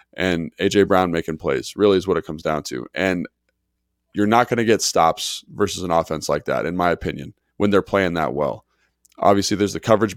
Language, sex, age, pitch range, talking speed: English, male, 20-39, 90-110 Hz, 210 wpm